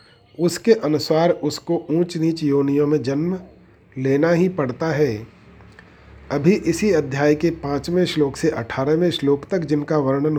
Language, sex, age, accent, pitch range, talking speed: Hindi, male, 40-59, native, 130-170 Hz, 140 wpm